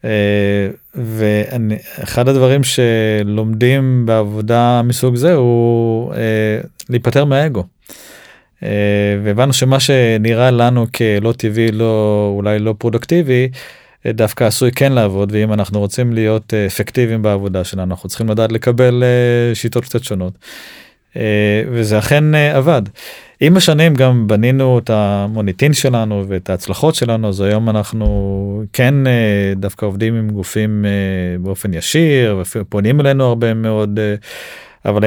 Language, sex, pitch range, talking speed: Hebrew, male, 105-125 Hz, 120 wpm